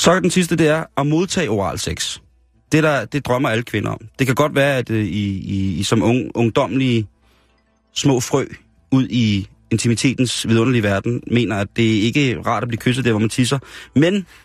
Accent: native